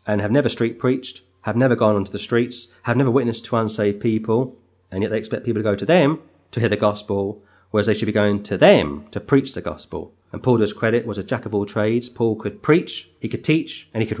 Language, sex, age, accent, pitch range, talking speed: English, male, 30-49, British, 100-120 Hz, 255 wpm